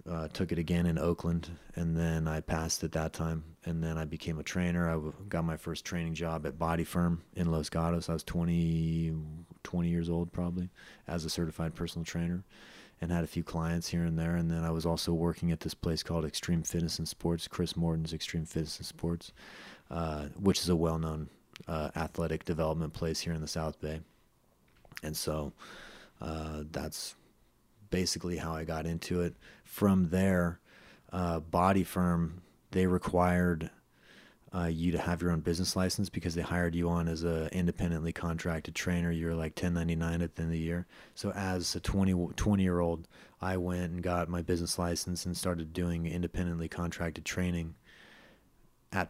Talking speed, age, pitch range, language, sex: 185 wpm, 30-49, 80-90 Hz, English, male